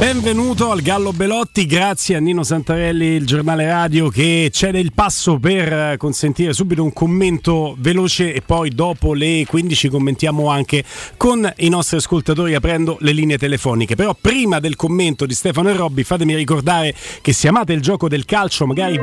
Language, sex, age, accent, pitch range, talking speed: Italian, male, 40-59, native, 140-195 Hz, 165 wpm